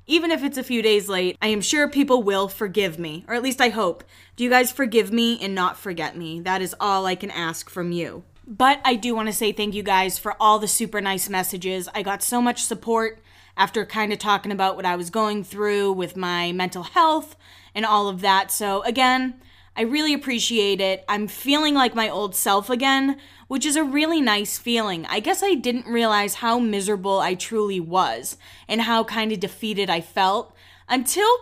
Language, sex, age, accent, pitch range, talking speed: English, female, 20-39, American, 190-245 Hz, 210 wpm